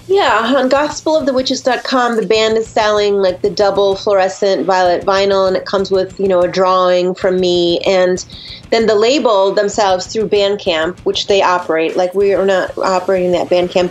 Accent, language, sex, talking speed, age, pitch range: American, English, female, 175 wpm, 30-49, 185-225 Hz